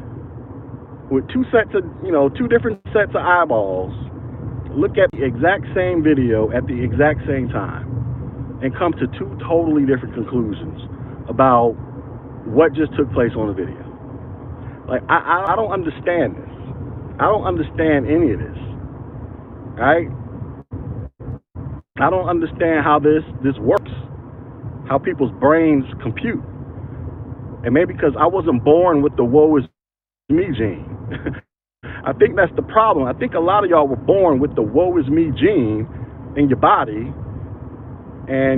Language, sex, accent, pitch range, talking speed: English, male, American, 125-155 Hz, 150 wpm